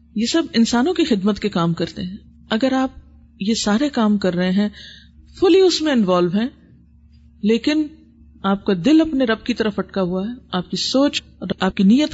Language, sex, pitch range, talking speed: Urdu, female, 195-245 Hz, 200 wpm